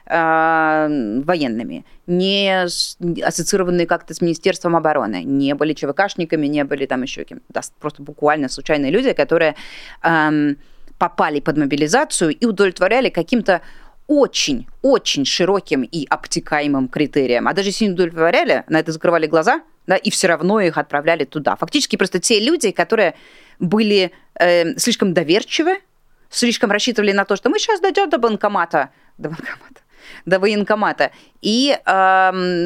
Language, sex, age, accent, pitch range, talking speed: Russian, female, 30-49, native, 160-245 Hz, 135 wpm